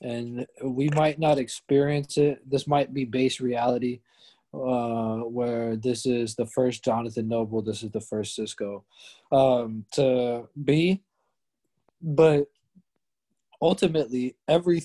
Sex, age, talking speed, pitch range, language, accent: male, 20-39, 120 wpm, 120-145 Hz, English, American